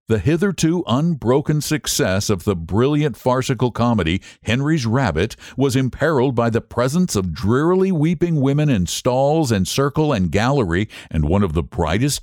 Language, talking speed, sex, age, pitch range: English, 150 wpm, male, 60-79, 90-140 Hz